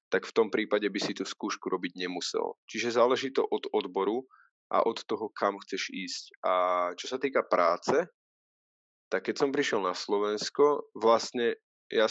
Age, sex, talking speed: 20-39, male, 170 wpm